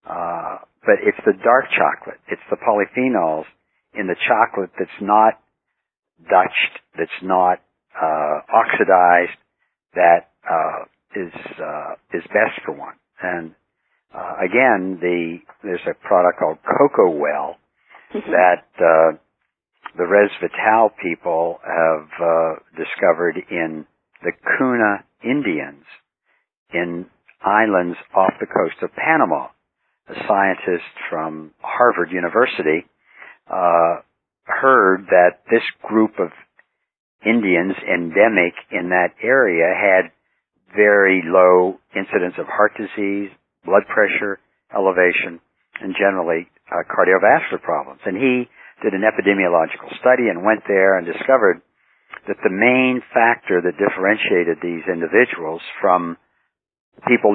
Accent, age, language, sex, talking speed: American, 60-79, English, male, 115 wpm